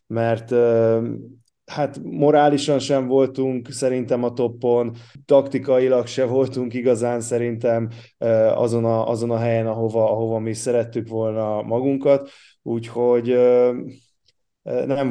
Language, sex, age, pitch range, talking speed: Hungarian, male, 20-39, 115-125 Hz, 105 wpm